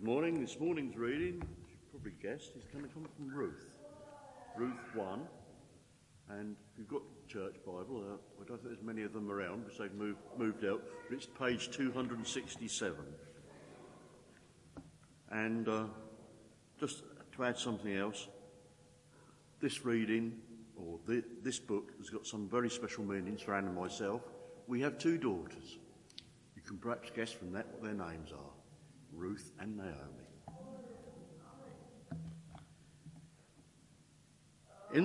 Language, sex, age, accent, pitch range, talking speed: English, male, 60-79, British, 100-135 Hz, 135 wpm